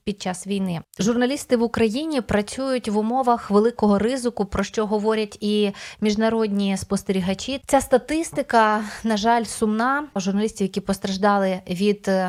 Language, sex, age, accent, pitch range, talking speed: Ukrainian, female, 20-39, native, 205-235 Hz, 125 wpm